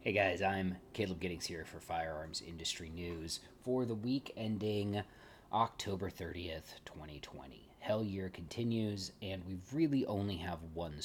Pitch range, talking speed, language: 90-105 Hz, 140 wpm, English